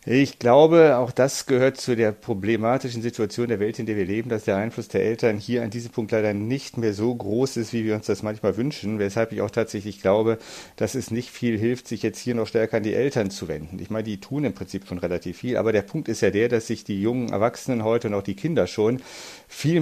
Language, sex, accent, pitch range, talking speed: German, male, German, 110-135 Hz, 250 wpm